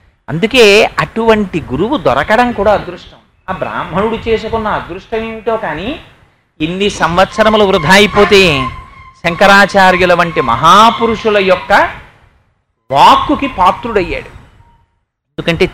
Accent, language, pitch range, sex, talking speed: native, Telugu, 180-220 Hz, male, 90 wpm